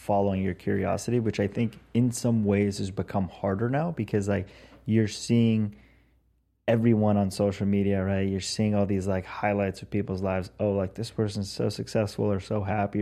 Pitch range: 100-110 Hz